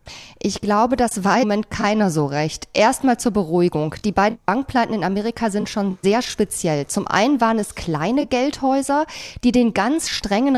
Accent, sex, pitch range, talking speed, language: German, female, 200-245 Hz, 175 wpm, German